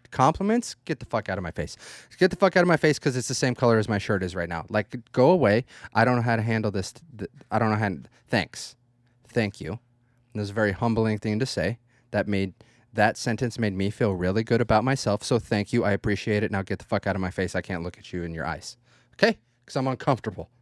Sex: male